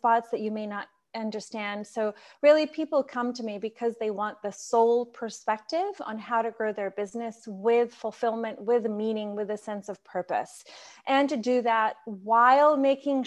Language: English